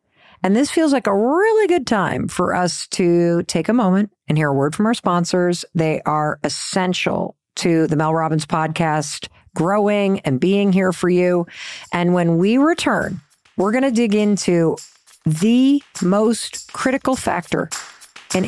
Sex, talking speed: female, 160 wpm